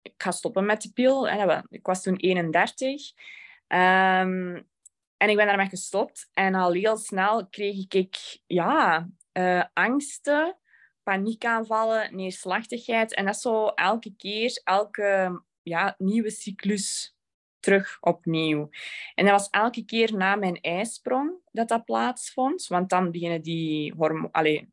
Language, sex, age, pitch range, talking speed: Dutch, female, 20-39, 170-225 Hz, 120 wpm